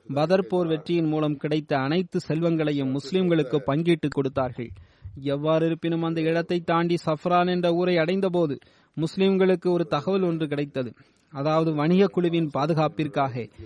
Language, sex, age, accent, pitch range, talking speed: Tamil, male, 30-49, native, 145-170 Hz, 125 wpm